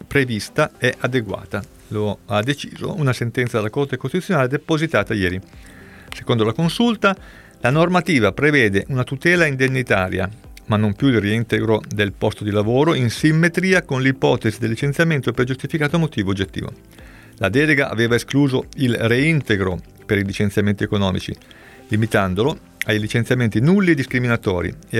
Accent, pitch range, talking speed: native, 100-135 Hz, 140 wpm